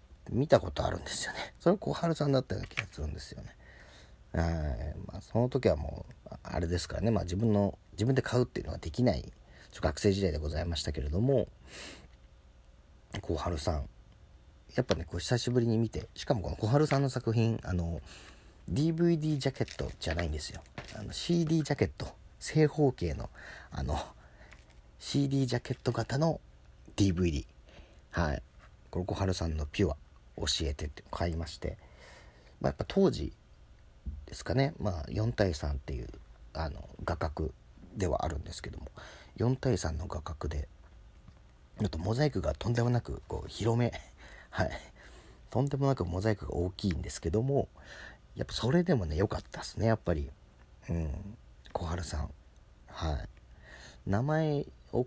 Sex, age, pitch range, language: male, 40-59, 75-115 Hz, Japanese